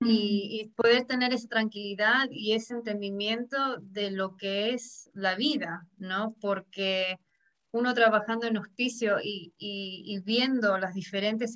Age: 30-49